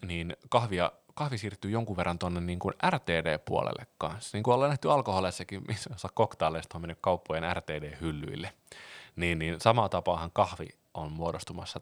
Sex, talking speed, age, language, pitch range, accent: male, 140 wpm, 30-49, Finnish, 90-115 Hz, native